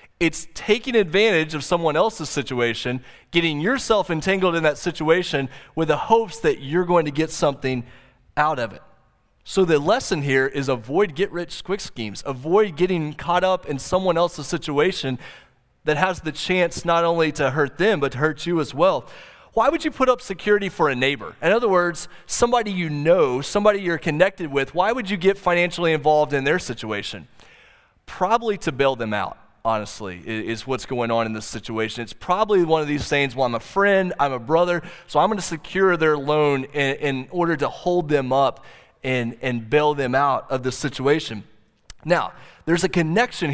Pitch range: 135-185 Hz